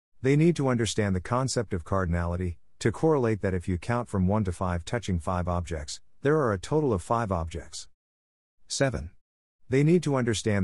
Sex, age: male, 50-69